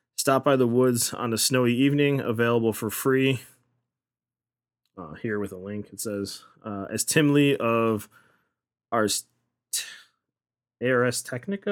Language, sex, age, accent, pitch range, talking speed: English, male, 20-39, American, 115-135 Hz, 140 wpm